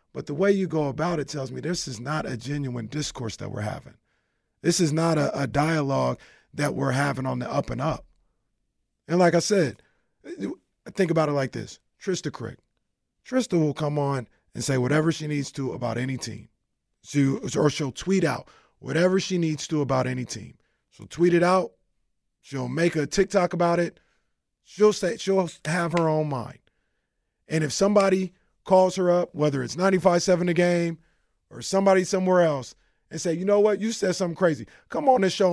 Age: 30-49